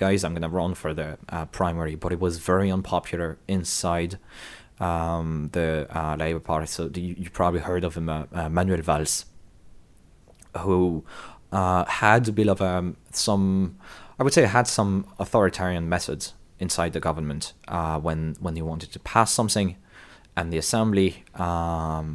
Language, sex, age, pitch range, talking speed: English, male, 20-39, 80-95 Hz, 155 wpm